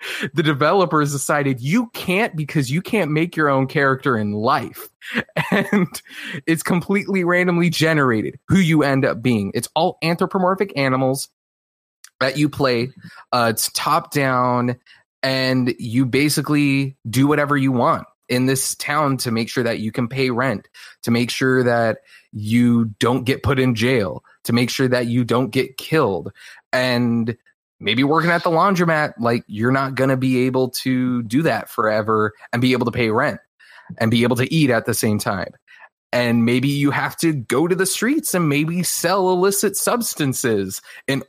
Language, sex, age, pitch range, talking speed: English, male, 20-39, 125-165 Hz, 170 wpm